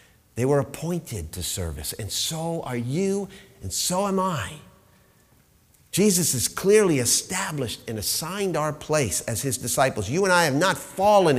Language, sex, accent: English, male, American